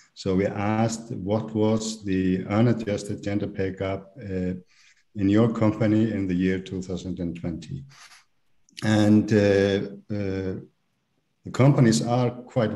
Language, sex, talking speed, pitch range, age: English, male, 120 wpm, 95-115 Hz, 50-69